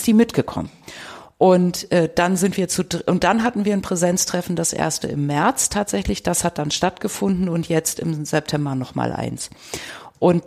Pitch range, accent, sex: 160-185 Hz, German, female